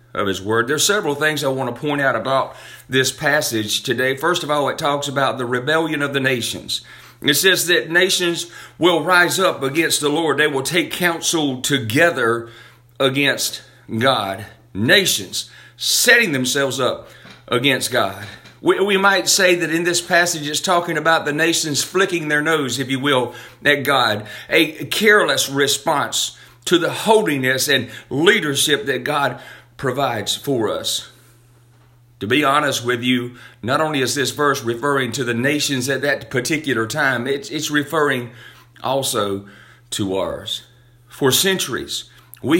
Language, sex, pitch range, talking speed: English, male, 125-165 Hz, 155 wpm